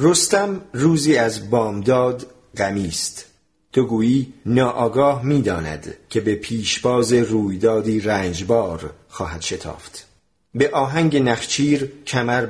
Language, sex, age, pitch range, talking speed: Persian, male, 40-59, 110-145 Hz, 105 wpm